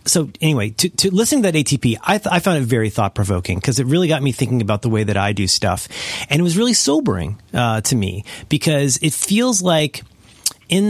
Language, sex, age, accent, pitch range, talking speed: English, male, 40-59, American, 110-145 Hz, 225 wpm